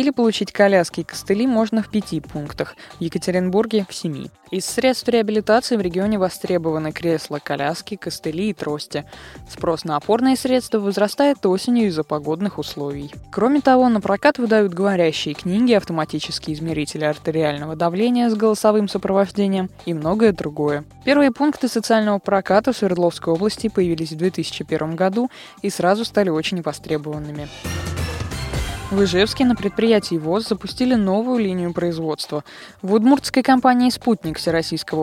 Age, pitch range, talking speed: 20-39, 160-215 Hz, 135 wpm